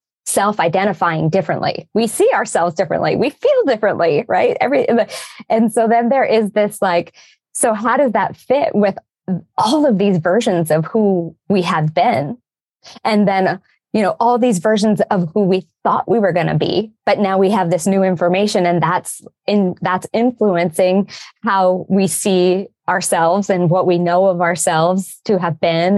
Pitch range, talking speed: 175-215 Hz, 175 wpm